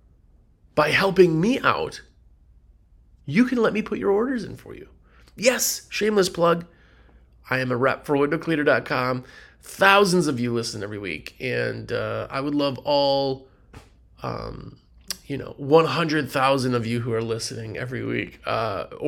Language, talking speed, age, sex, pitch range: English, 150 wpm, 30-49, male, 130-195 Hz